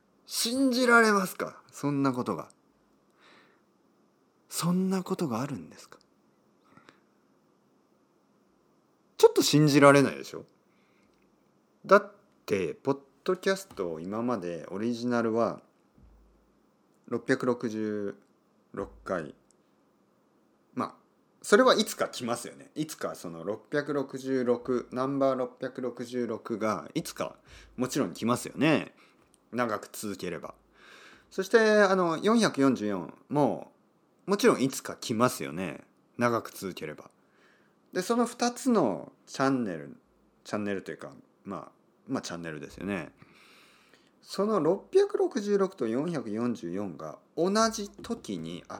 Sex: male